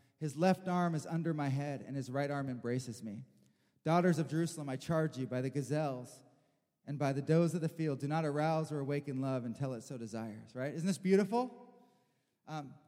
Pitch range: 150-210 Hz